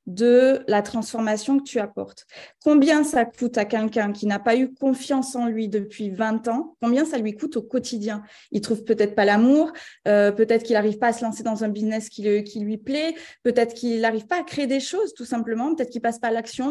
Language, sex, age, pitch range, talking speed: French, female, 30-49, 215-250 Hz, 235 wpm